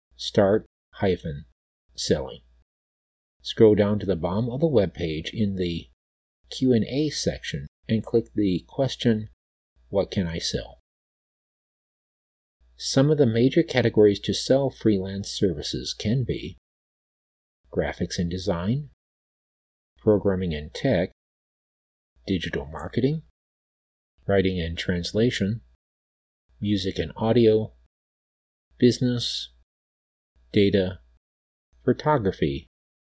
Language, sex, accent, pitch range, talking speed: English, male, American, 70-115 Hz, 100 wpm